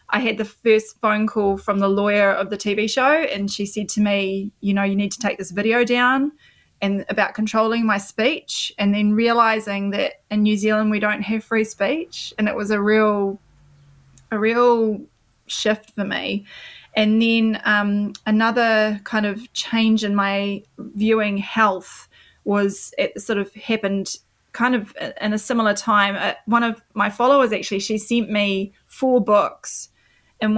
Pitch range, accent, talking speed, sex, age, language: 200-220 Hz, Australian, 175 wpm, female, 20-39, English